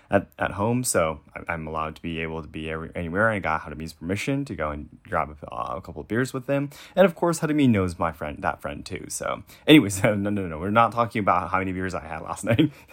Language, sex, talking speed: English, male, 250 wpm